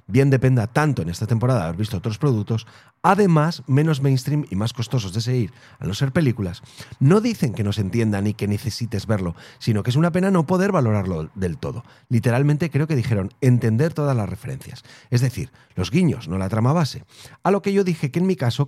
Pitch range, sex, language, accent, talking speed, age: 115-145 Hz, male, Spanish, Spanish, 220 wpm, 40-59